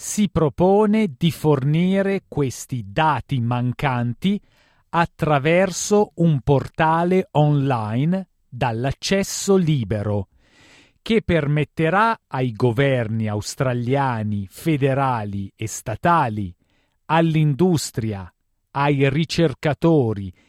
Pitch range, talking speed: 125-170 Hz, 70 wpm